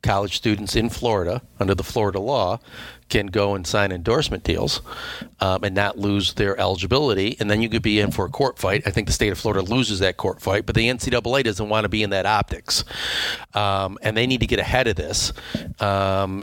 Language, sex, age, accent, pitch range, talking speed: English, male, 40-59, American, 100-115 Hz, 220 wpm